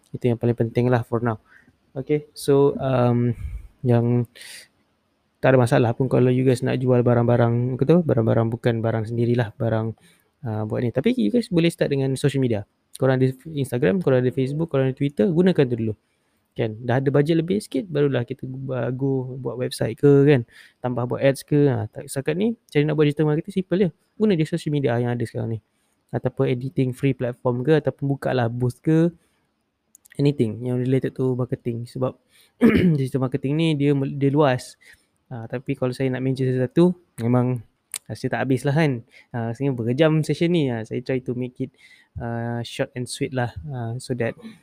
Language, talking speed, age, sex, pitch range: Malay, 190 wpm, 20-39, male, 120-140 Hz